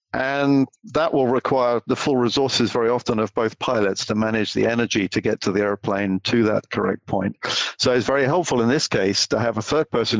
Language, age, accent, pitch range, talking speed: English, 50-69, British, 100-115 Hz, 220 wpm